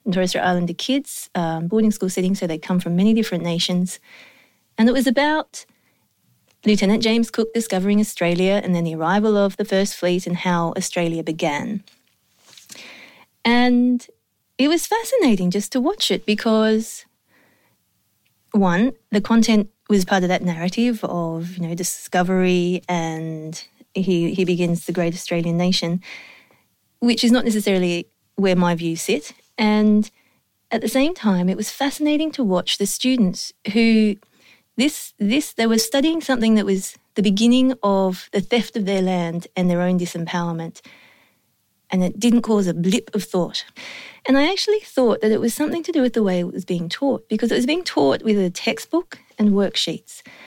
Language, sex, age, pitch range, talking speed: English, female, 30-49, 180-235 Hz, 170 wpm